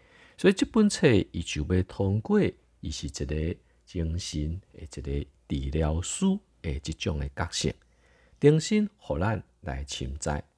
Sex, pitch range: male, 75-95 Hz